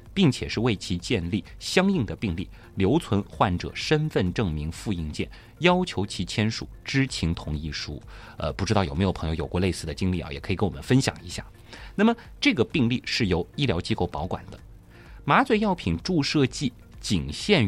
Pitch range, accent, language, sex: 90-135 Hz, native, Chinese, male